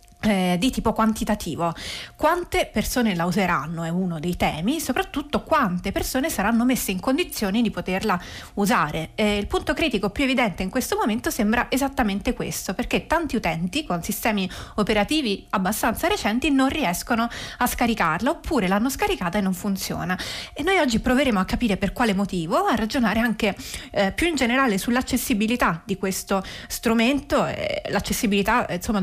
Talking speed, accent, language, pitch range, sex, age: 155 wpm, native, Italian, 200-250 Hz, female, 30-49